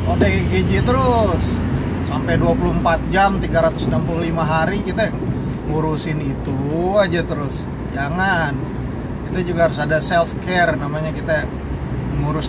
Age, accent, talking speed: 30-49, native, 110 wpm